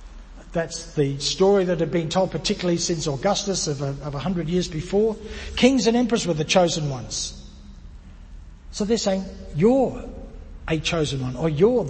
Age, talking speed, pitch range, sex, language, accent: 60-79, 155 wpm, 135-215 Hz, male, English, Australian